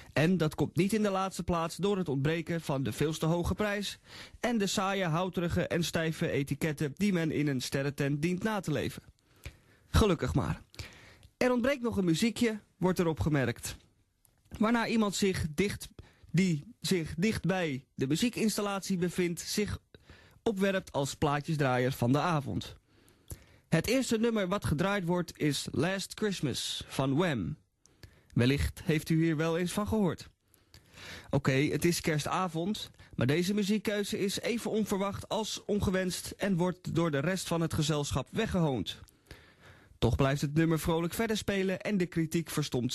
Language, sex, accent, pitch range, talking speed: Dutch, male, Dutch, 140-200 Hz, 155 wpm